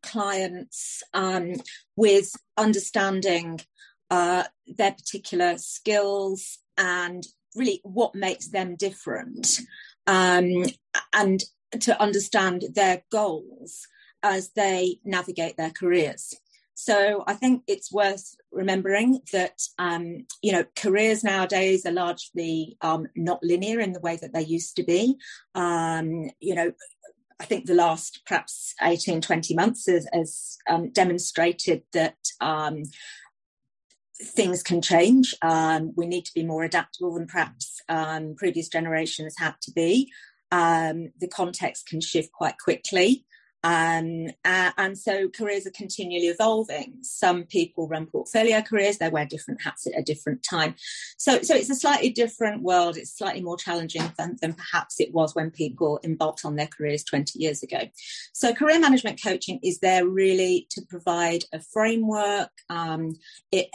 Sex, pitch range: female, 165-205 Hz